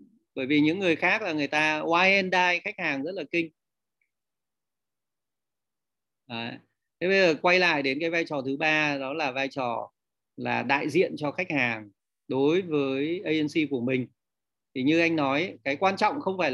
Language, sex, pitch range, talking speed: Vietnamese, male, 135-195 Hz, 180 wpm